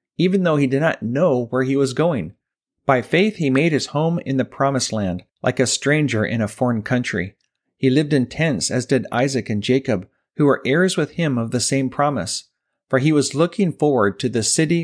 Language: English